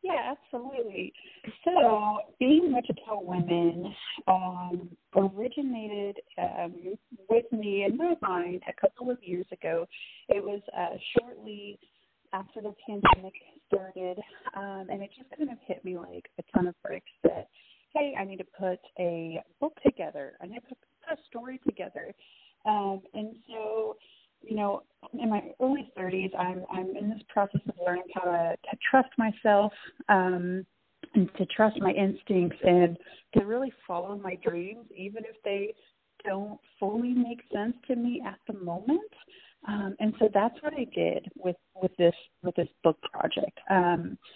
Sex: female